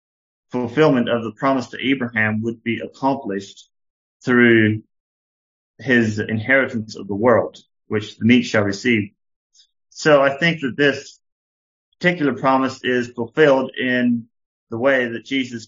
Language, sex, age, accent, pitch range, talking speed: English, male, 30-49, American, 110-125 Hz, 130 wpm